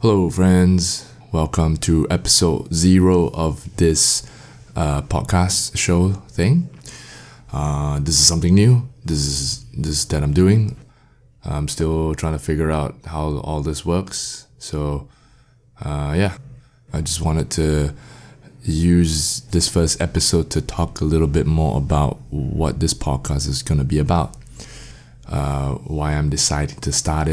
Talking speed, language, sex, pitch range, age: 145 wpm, English, male, 75-100 Hz, 20-39